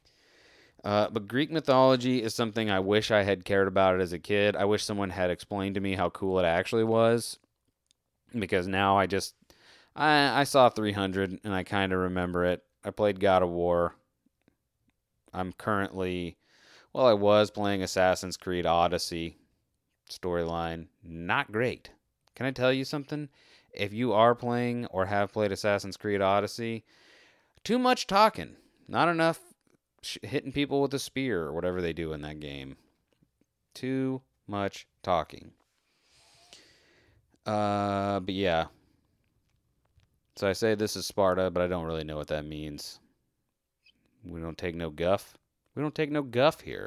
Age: 30-49